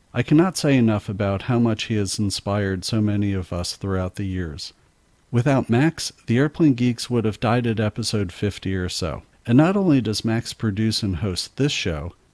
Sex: male